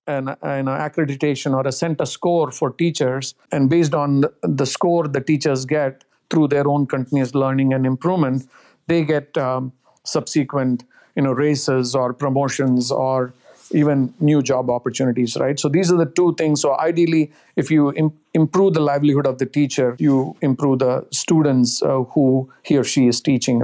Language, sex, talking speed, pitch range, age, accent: English, male, 165 wpm, 130-155 Hz, 50-69, Indian